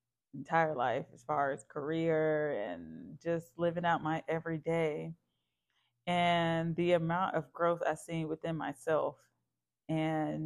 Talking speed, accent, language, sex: 125 wpm, American, English, female